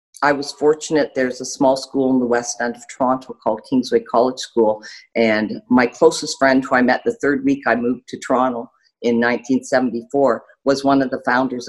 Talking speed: 195 wpm